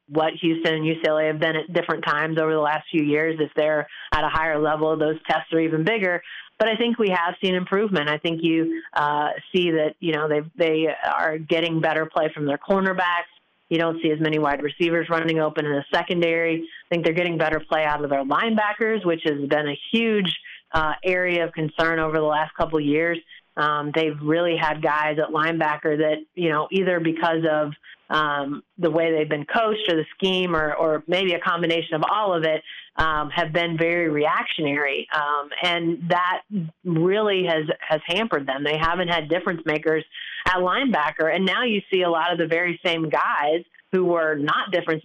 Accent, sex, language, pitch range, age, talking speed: American, female, English, 155-175 Hz, 30-49, 200 wpm